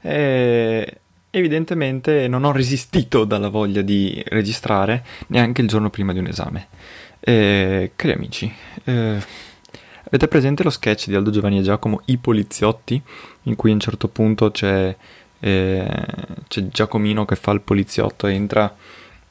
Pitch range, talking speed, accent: 100-125 Hz, 145 wpm, native